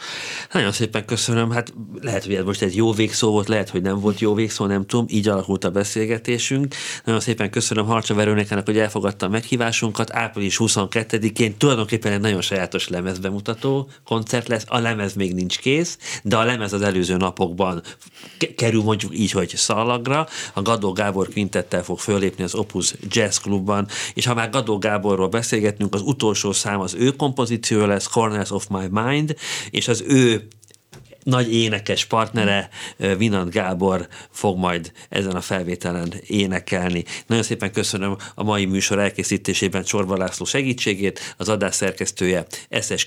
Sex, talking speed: male, 155 wpm